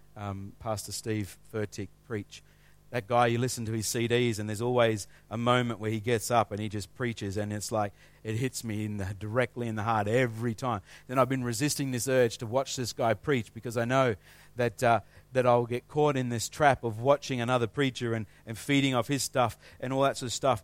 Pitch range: 115-140 Hz